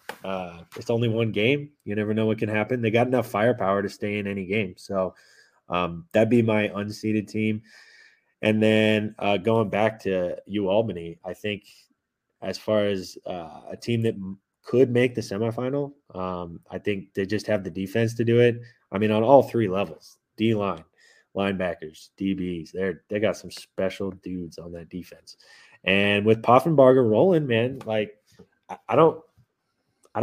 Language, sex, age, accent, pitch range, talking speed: English, male, 20-39, American, 95-115 Hz, 175 wpm